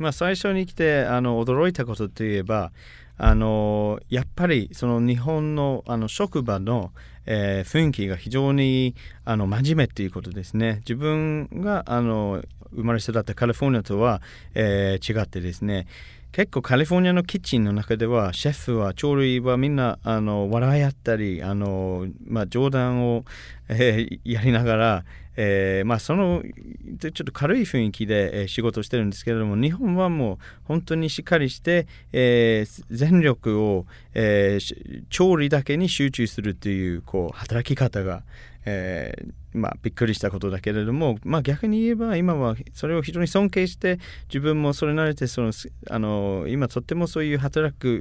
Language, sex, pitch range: Japanese, male, 105-145 Hz